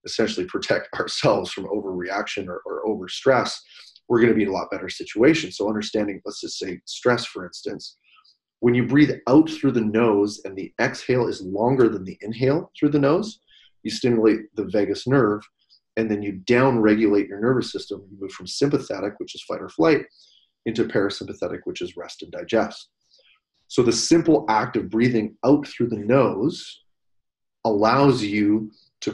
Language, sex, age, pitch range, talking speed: English, male, 30-49, 105-130 Hz, 175 wpm